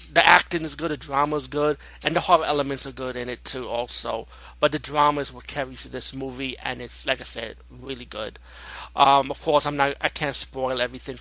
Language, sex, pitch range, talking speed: English, male, 115-145 Hz, 225 wpm